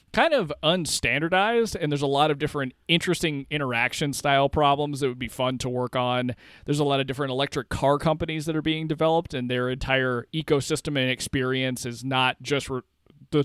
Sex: male